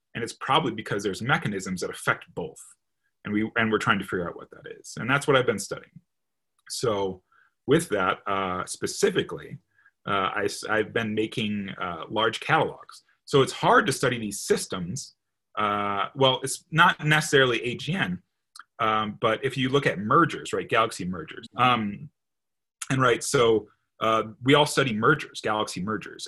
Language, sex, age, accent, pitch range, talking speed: English, male, 30-49, American, 105-145 Hz, 165 wpm